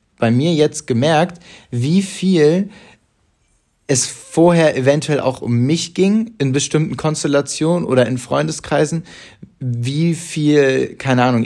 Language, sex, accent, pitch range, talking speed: German, male, German, 120-150 Hz, 120 wpm